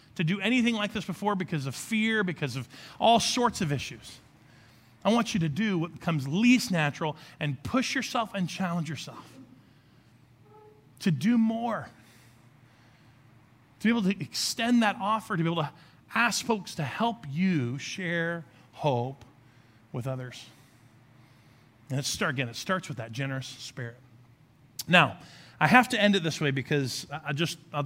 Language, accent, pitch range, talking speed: English, American, 135-190 Hz, 160 wpm